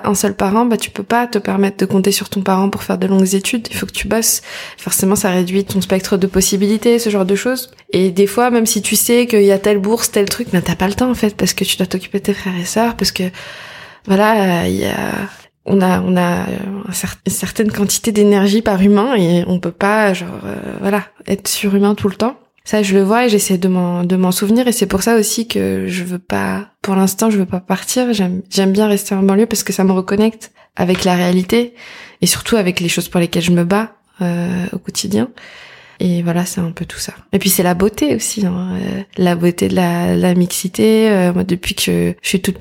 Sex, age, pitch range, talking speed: female, 20-39, 180-210 Hz, 250 wpm